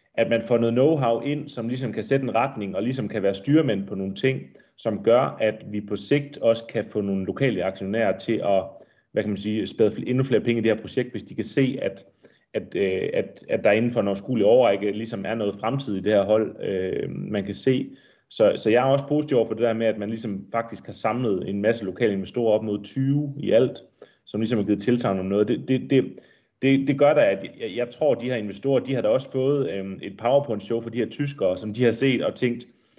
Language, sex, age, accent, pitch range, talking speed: Danish, male, 30-49, native, 105-130 Hz, 250 wpm